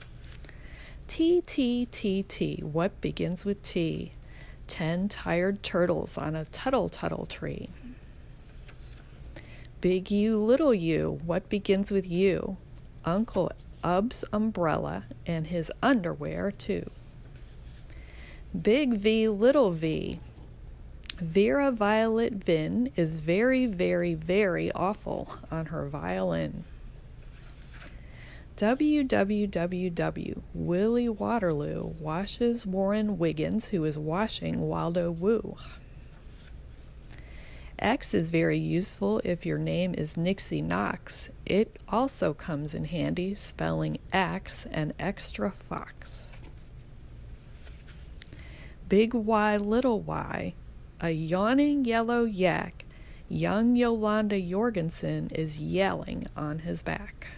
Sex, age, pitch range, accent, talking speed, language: female, 40-59, 150-215 Hz, American, 95 wpm, English